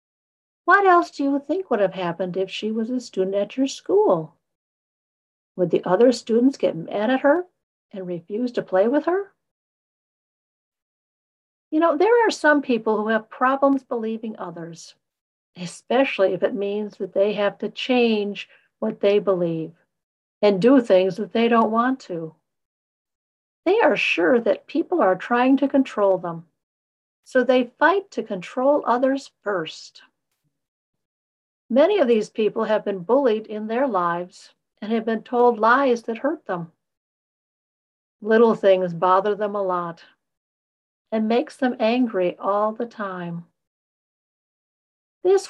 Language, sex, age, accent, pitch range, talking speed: English, female, 50-69, American, 190-270 Hz, 145 wpm